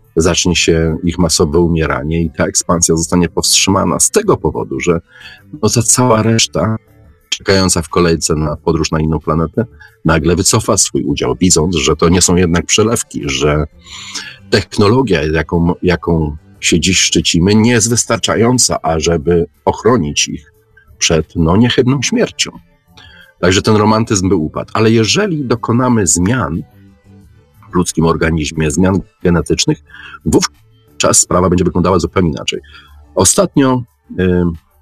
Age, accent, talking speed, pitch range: 40-59, native, 130 wpm, 80-105 Hz